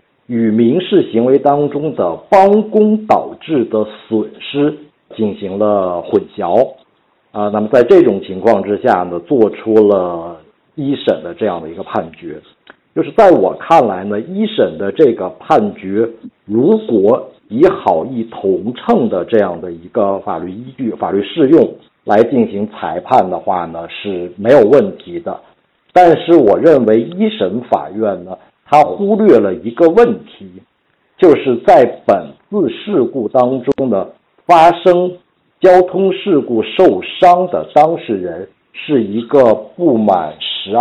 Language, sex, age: Chinese, male, 50-69